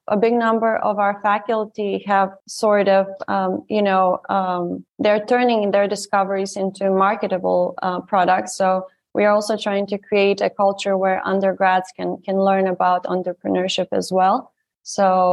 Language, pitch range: English, 190-220 Hz